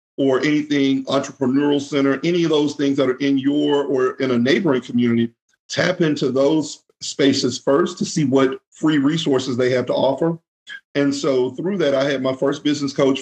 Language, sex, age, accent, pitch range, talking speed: English, male, 50-69, American, 130-150 Hz, 185 wpm